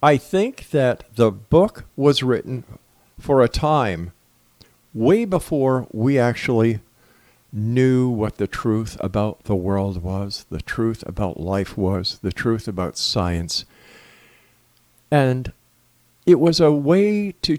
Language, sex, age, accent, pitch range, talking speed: English, male, 50-69, American, 105-140 Hz, 125 wpm